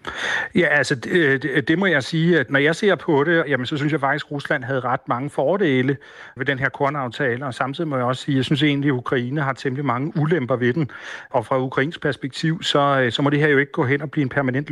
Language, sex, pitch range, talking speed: Danish, male, 125-145 Hz, 255 wpm